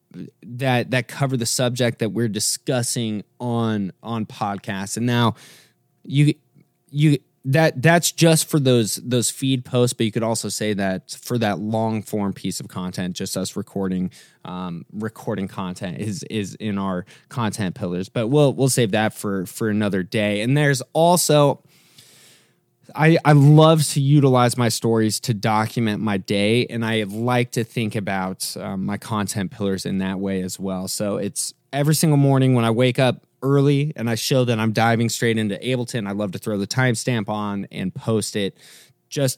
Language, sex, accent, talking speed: English, male, American, 175 wpm